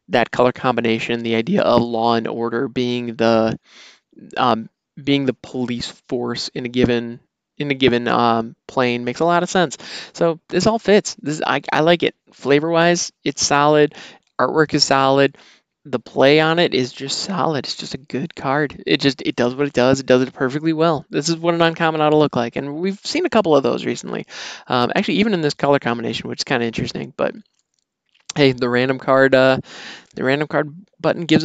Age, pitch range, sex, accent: 20-39, 125-160 Hz, male, American